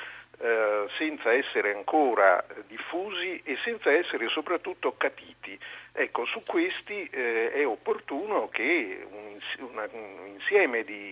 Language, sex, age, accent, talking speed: Italian, male, 50-69, native, 95 wpm